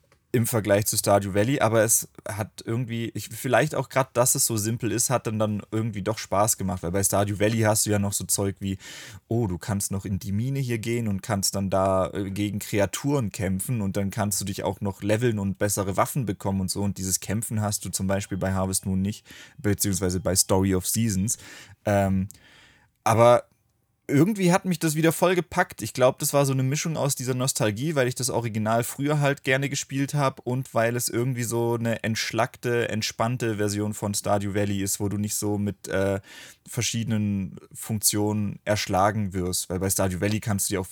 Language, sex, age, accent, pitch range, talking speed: German, male, 20-39, German, 100-115 Hz, 205 wpm